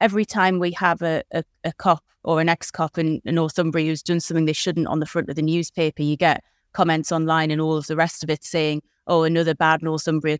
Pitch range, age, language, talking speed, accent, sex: 165-195 Hz, 30-49, English, 225 wpm, British, female